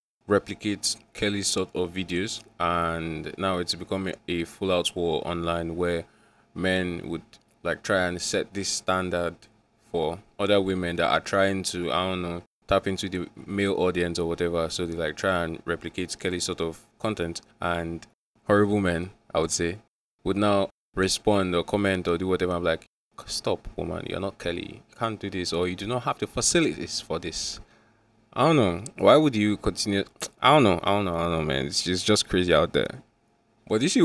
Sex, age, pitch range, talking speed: male, 20-39, 85-100 Hz, 195 wpm